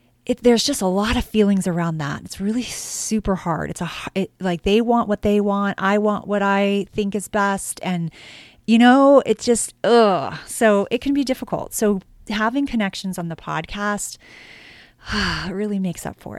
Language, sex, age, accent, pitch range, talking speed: English, female, 30-49, American, 180-230 Hz, 170 wpm